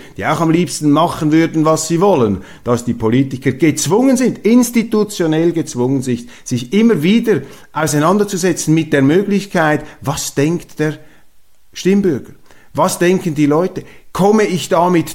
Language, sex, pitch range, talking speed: German, male, 140-185 Hz, 145 wpm